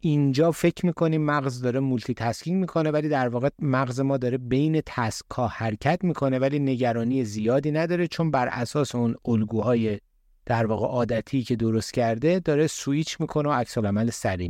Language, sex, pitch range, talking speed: Persian, male, 110-145 Hz, 165 wpm